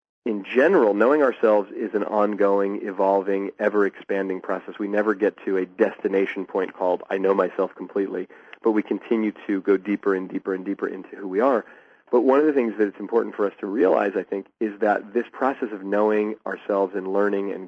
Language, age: English, 40-59